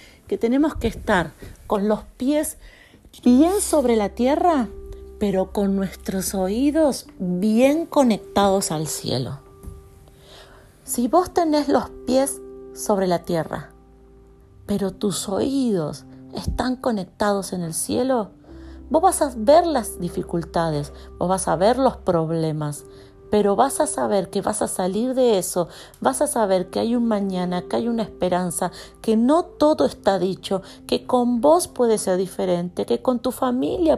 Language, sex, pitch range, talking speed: Spanish, female, 165-250 Hz, 145 wpm